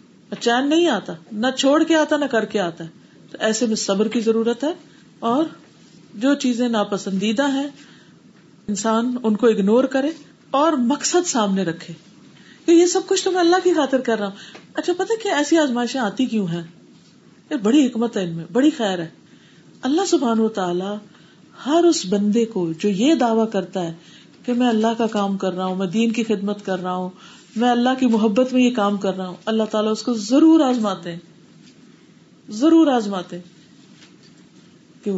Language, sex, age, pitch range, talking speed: Urdu, female, 40-59, 205-280 Hz, 180 wpm